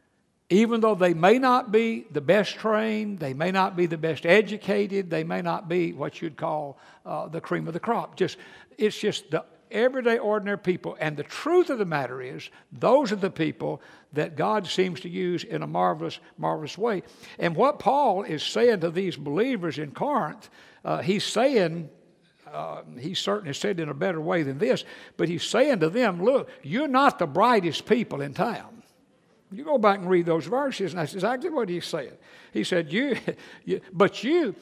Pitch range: 165-225 Hz